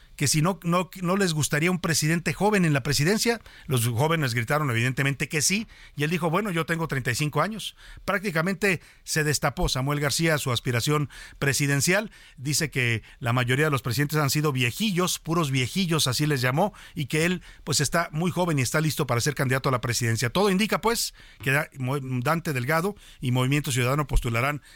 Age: 50-69